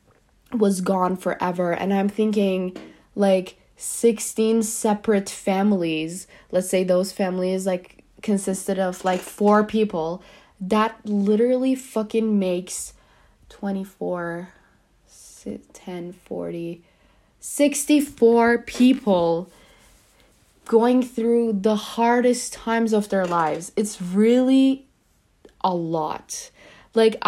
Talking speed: 90 wpm